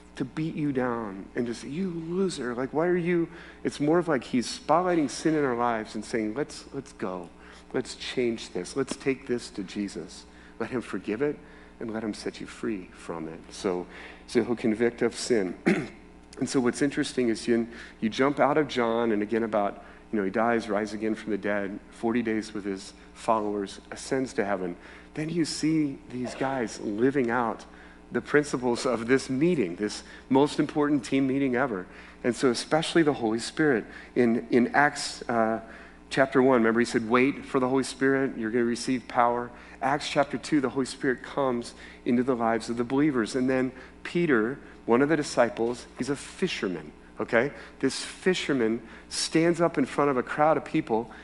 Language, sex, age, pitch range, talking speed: English, male, 40-59, 105-145 Hz, 190 wpm